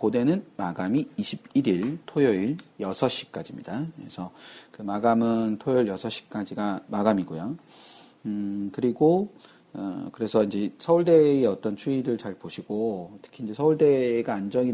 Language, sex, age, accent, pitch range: Korean, male, 40-59, native, 95-125 Hz